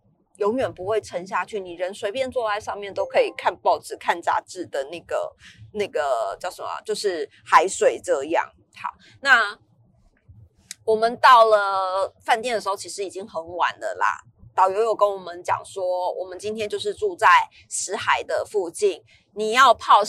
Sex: female